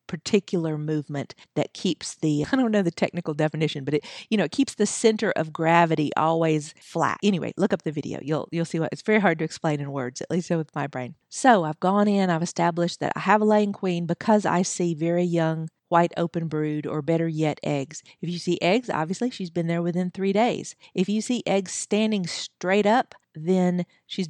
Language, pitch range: English, 160-190 Hz